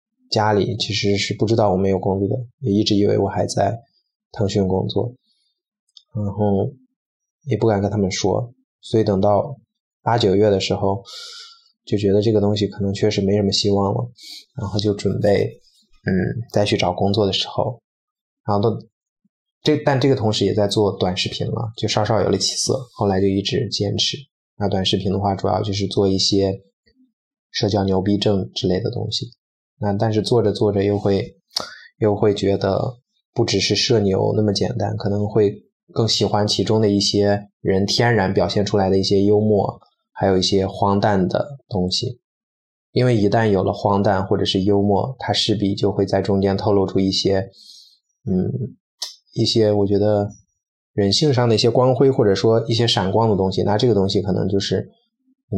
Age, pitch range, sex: 20-39, 100-120 Hz, male